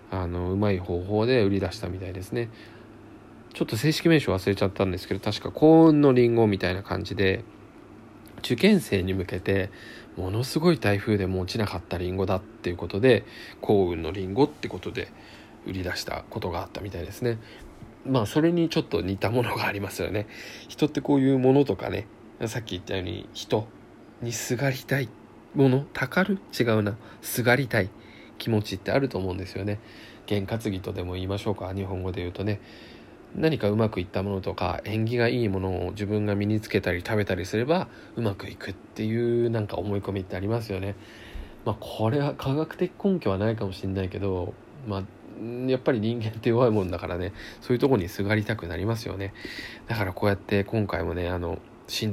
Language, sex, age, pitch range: Japanese, male, 20-39, 95-120 Hz